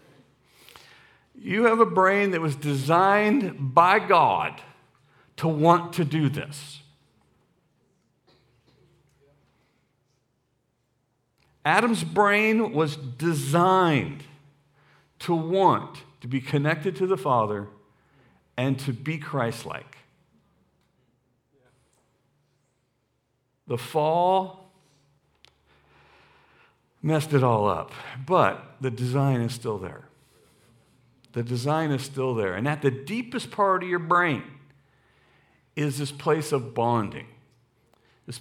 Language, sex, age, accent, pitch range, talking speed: English, male, 50-69, American, 130-170 Hz, 95 wpm